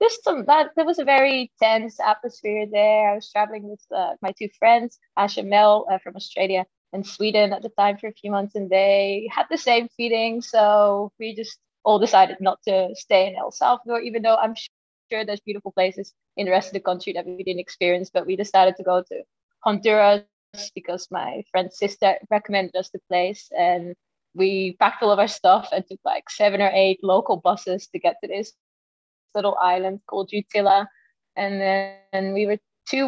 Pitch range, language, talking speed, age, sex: 190-225 Hz, English, 200 wpm, 20-39, female